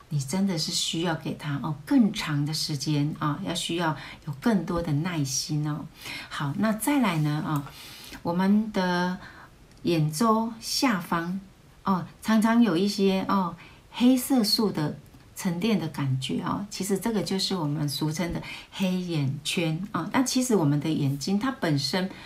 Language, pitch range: Chinese, 150-205 Hz